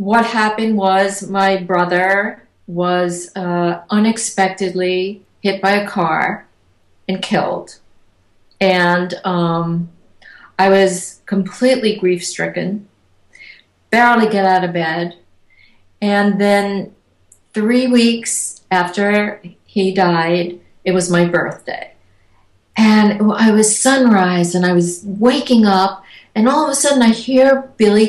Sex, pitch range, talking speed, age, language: female, 180-260 Hz, 115 wpm, 50-69, English